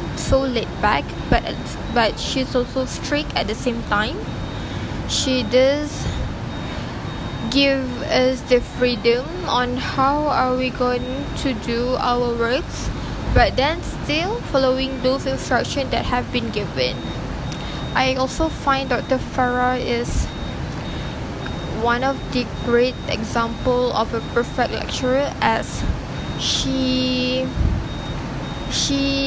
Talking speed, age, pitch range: 115 wpm, 10-29, 250-270 Hz